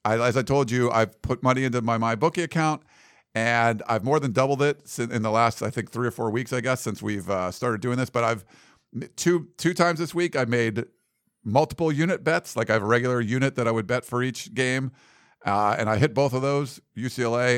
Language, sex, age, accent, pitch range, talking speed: English, male, 50-69, American, 115-140 Hz, 235 wpm